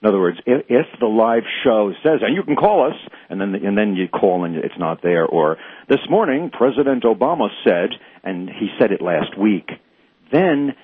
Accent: American